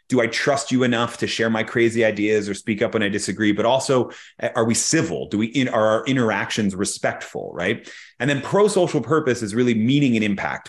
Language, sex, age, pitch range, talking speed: English, male, 30-49, 105-145 Hz, 210 wpm